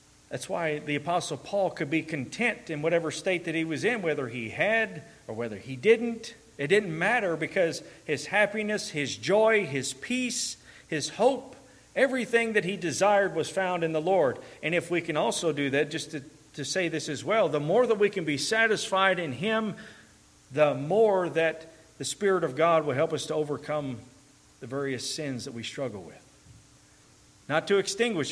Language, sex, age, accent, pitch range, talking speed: English, male, 40-59, American, 120-170 Hz, 185 wpm